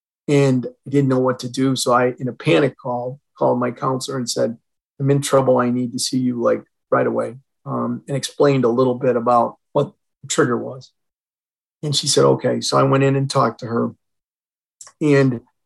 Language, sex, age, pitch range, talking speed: English, male, 40-59, 120-145 Hz, 205 wpm